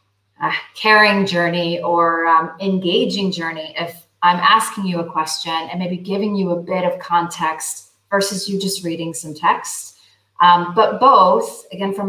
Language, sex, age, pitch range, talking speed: English, female, 30-49, 175-225 Hz, 160 wpm